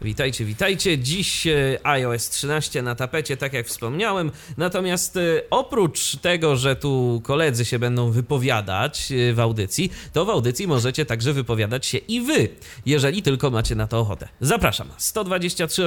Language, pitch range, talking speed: Polish, 120-160 Hz, 145 wpm